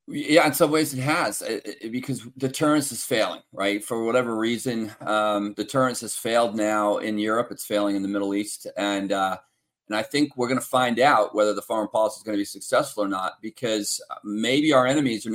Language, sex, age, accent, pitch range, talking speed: English, male, 40-59, American, 105-130 Hz, 205 wpm